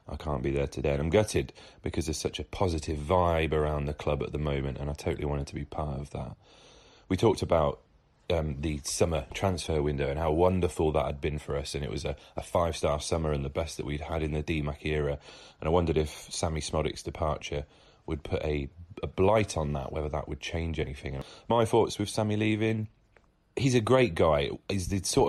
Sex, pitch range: male, 75-90 Hz